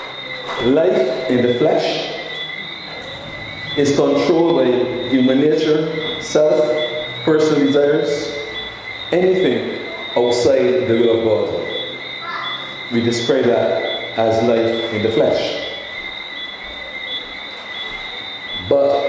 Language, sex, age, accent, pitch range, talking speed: English, male, 50-69, American, 125-160 Hz, 85 wpm